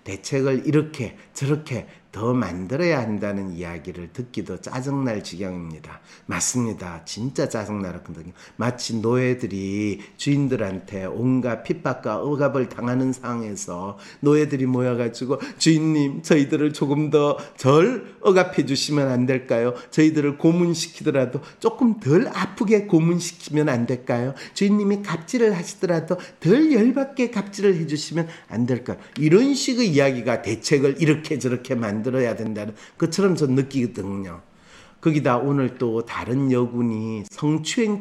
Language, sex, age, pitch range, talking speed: English, male, 40-59, 110-155 Hz, 105 wpm